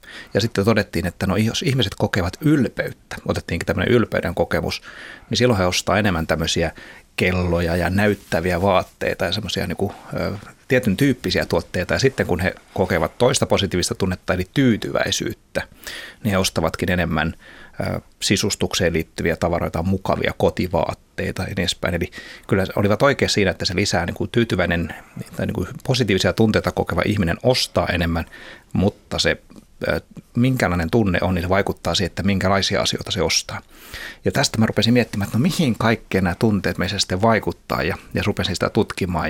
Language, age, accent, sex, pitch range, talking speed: Finnish, 30-49, native, male, 85-110 Hz, 155 wpm